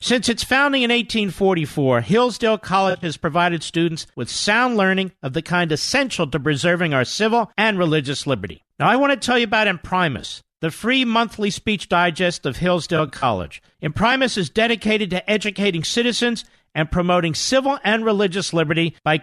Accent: American